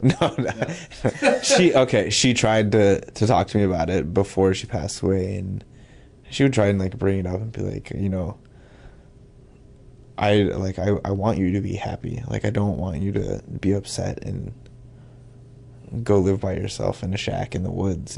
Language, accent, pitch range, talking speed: English, American, 100-125 Hz, 195 wpm